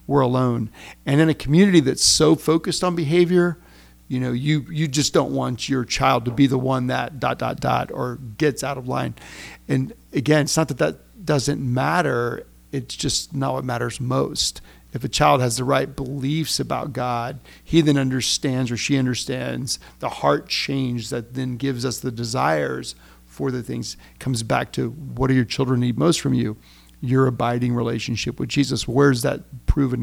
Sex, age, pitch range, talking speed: male, 40-59, 115-140 Hz, 190 wpm